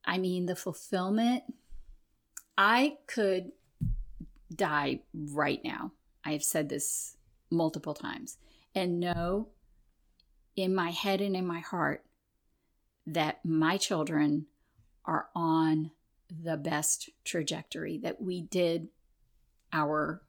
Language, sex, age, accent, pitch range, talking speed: English, female, 40-59, American, 155-190 Hz, 105 wpm